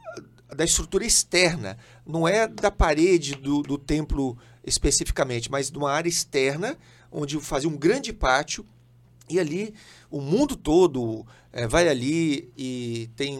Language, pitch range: Portuguese, 130-170 Hz